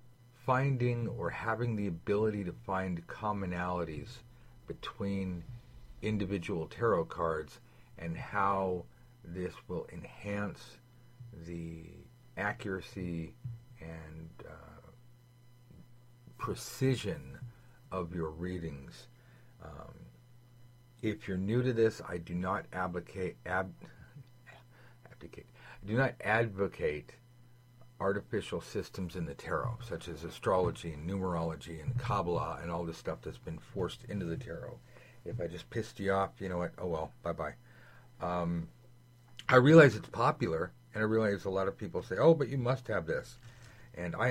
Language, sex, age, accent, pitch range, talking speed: English, male, 50-69, American, 90-120 Hz, 130 wpm